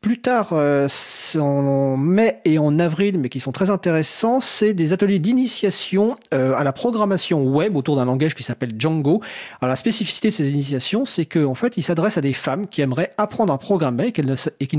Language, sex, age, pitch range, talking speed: French, male, 40-59, 135-185 Hz, 215 wpm